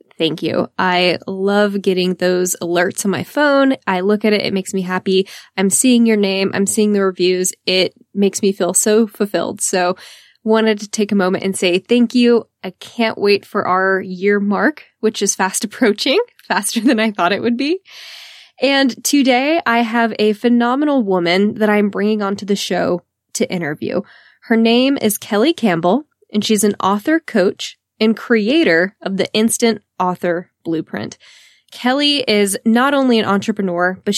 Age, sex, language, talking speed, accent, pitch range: 10-29, female, English, 175 wpm, American, 190-235 Hz